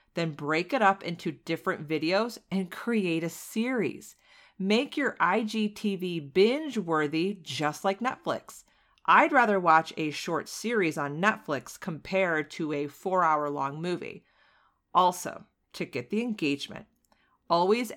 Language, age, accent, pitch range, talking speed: English, 40-59, American, 155-220 Hz, 135 wpm